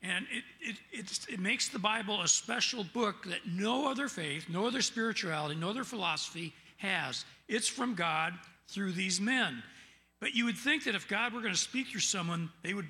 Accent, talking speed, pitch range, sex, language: American, 200 wpm, 155-210 Hz, male, English